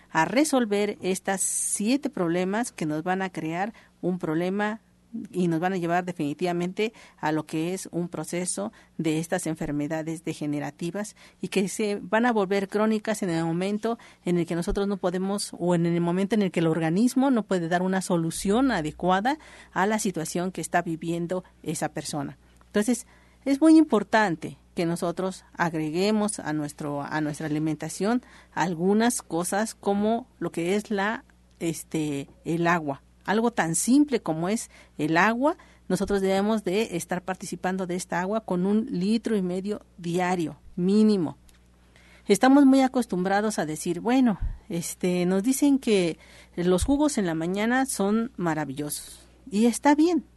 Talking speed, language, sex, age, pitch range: 155 wpm, Spanish, female, 50-69, 165-215 Hz